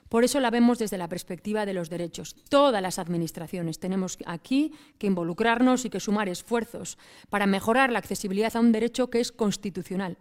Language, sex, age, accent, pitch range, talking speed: Spanish, female, 30-49, Spanish, 195-240 Hz, 180 wpm